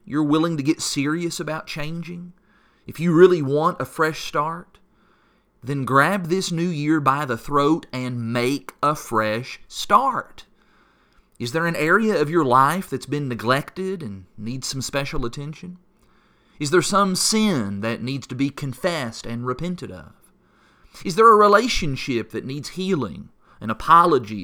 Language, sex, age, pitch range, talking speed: English, male, 30-49, 120-170 Hz, 155 wpm